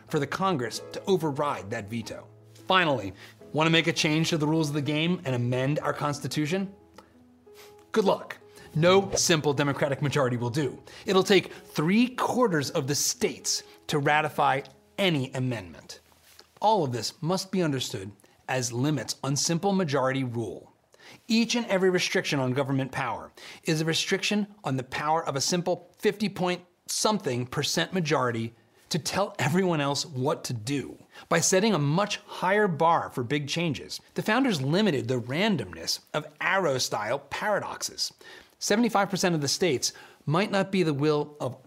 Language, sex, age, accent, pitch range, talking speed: English, male, 30-49, American, 135-185 Hz, 155 wpm